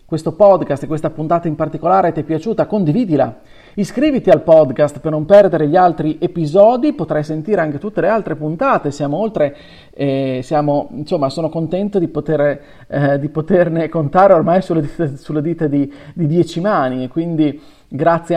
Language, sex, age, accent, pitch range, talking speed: Italian, male, 40-59, native, 145-190 Hz, 160 wpm